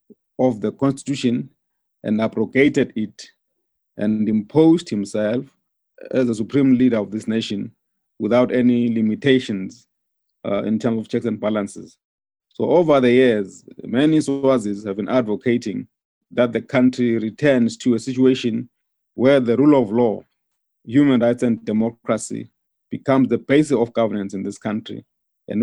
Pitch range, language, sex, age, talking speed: 110-130 Hz, English, male, 50-69, 140 wpm